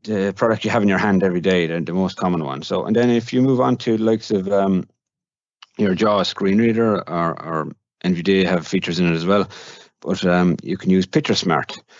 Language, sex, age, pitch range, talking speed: English, male, 30-49, 85-100 Hz, 235 wpm